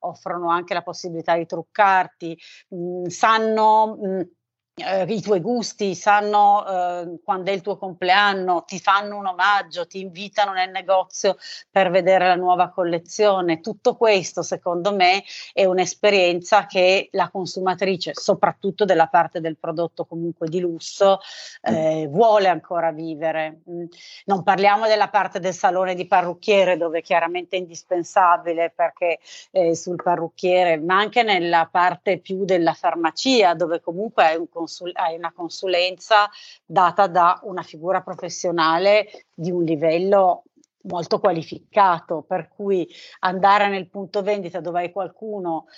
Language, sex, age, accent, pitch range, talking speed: Italian, female, 40-59, native, 170-200 Hz, 130 wpm